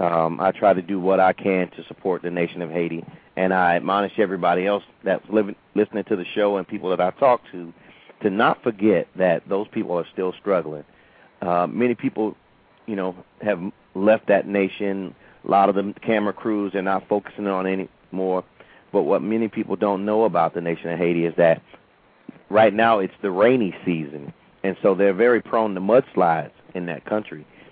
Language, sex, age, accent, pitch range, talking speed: English, male, 40-59, American, 90-110 Hz, 195 wpm